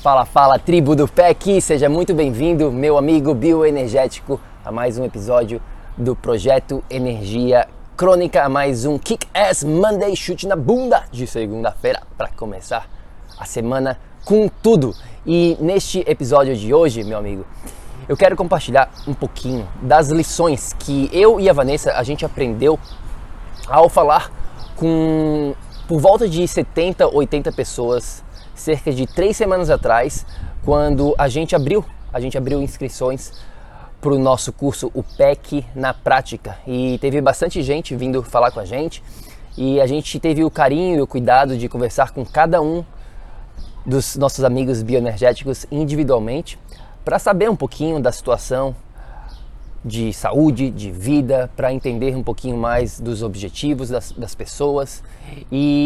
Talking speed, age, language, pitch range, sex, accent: 145 wpm, 20-39, Portuguese, 125-155 Hz, male, Brazilian